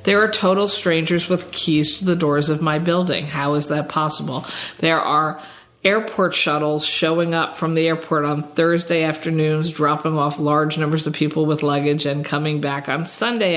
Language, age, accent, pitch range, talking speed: English, 50-69, American, 150-175 Hz, 180 wpm